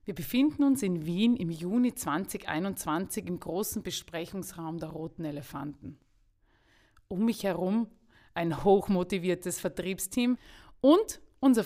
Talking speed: 115 wpm